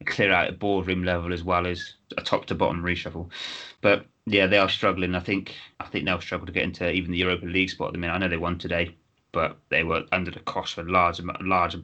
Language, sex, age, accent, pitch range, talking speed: English, male, 30-49, British, 85-95 Hz, 235 wpm